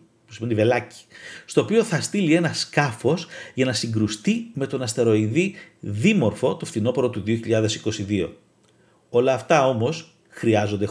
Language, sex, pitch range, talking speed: Greek, male, 110-160 Hz, 115 wpm